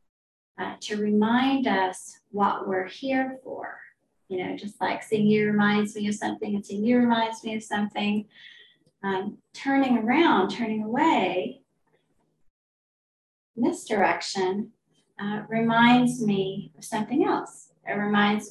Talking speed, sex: 135 wpm, female